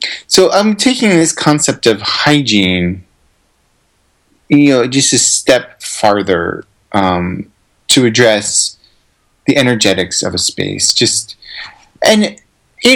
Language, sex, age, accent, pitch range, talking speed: English, male, 30-49, American, 95-115 Hz, 110 wpm